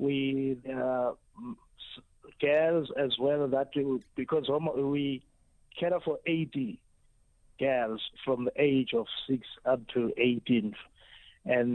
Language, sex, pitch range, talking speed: English, male, 125-140 Hz, 110 wpm